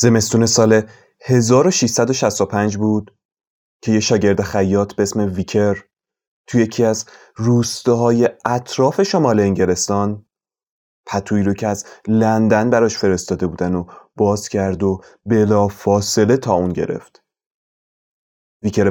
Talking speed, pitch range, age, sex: 110 wpm, 95-120 Hz, 30-49, male